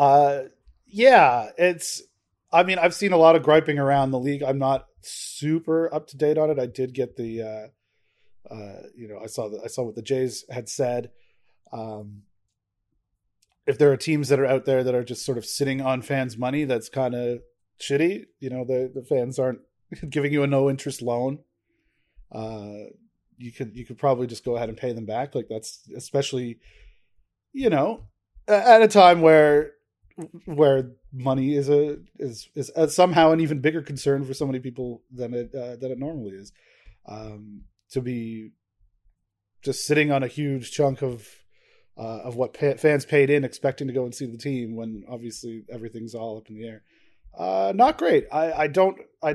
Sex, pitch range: male, 115-145 Hz